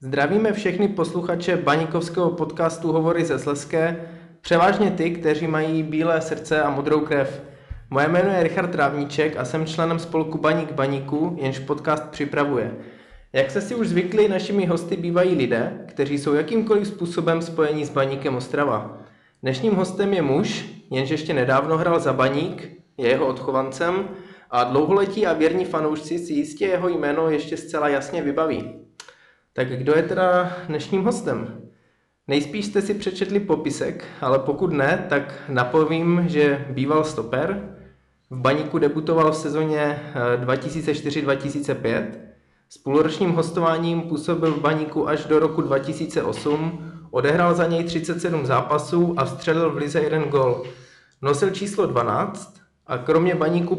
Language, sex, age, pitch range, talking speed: Czech, male, 20-39, 145-175 Hz, 140 wpm